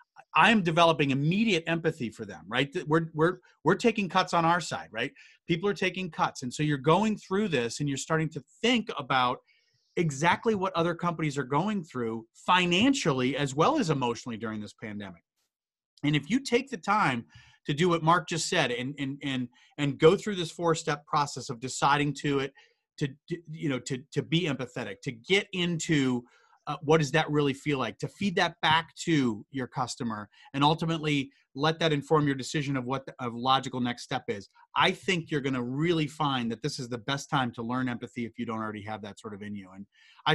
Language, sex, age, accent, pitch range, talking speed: English, male, 30-49, American, 125-165 Hz, 210 wpm